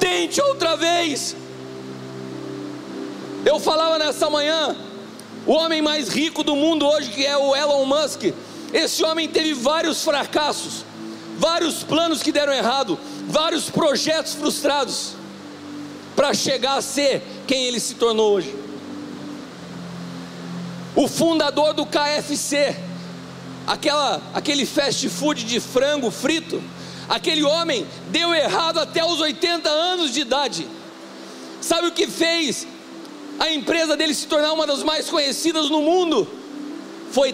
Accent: Brazilian